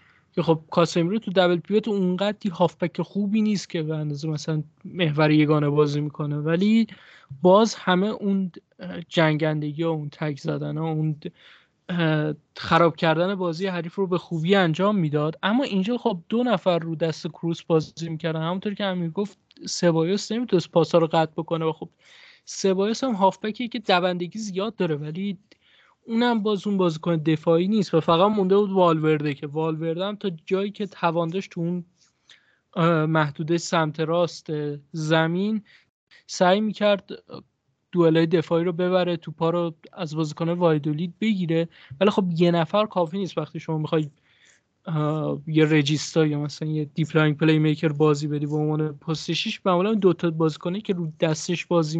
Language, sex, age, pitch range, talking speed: Persian, male, 20-39, 160-195 Hz, 160 wpm